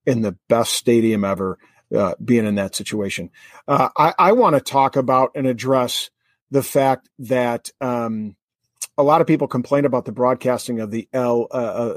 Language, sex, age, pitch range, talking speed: English, male, 40-59, 125-145 Hz, 170 wpm